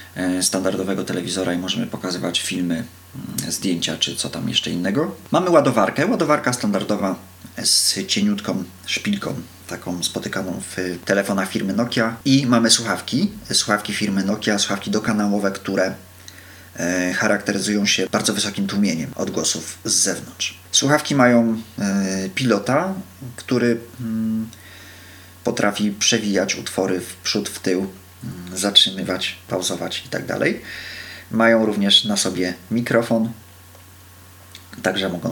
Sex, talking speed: male, 110 wpm